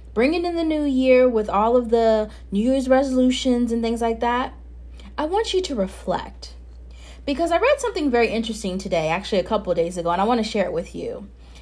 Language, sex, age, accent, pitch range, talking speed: English, female, 30-49, American, 160-245 Hz, 210 wpm